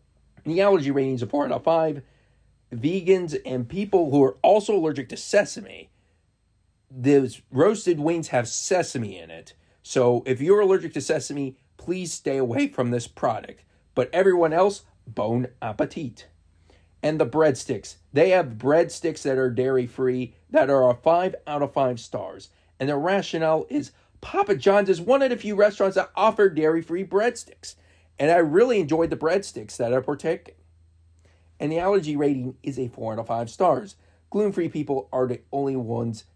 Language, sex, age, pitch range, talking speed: English, male, 40-59, 115-160 Hz, 165 wpm